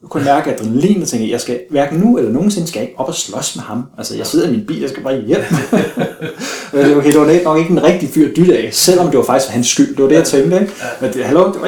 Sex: male